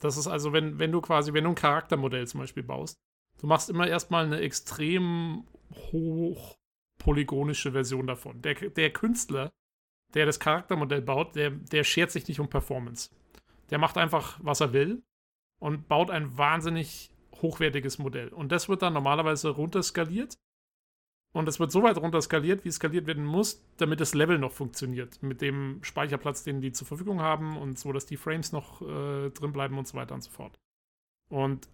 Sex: male